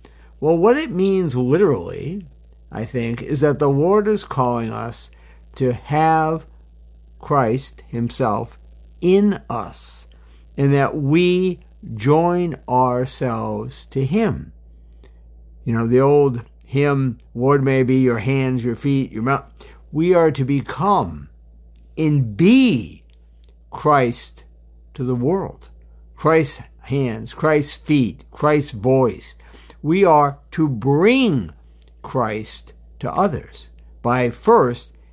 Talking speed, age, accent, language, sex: 115 wpm, 60-79, American, English, male